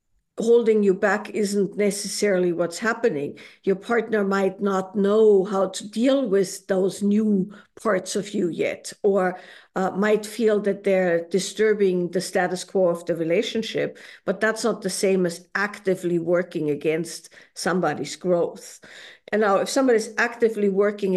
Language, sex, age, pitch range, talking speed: English, female, 50-69, 175-210 Hz, 145 wpm